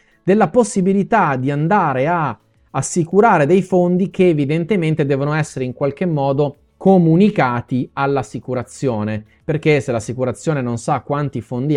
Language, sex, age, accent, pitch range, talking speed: Italian, male, 30-49, native, 130-175 Hz, 120 wpm